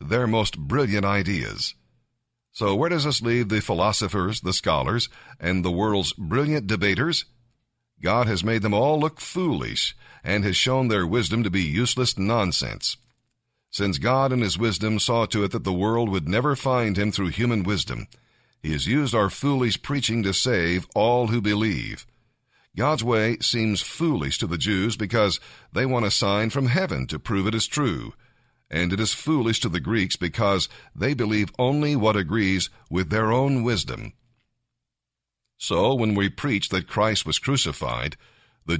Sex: male